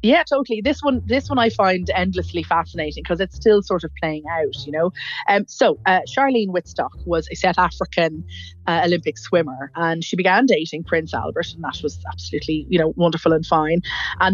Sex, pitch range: female, 160-190 Hz